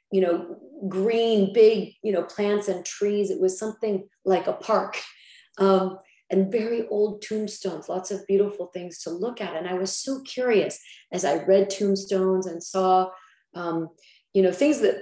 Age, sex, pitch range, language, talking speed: 40-59, female, 180-205 Hz, English, 170 wpm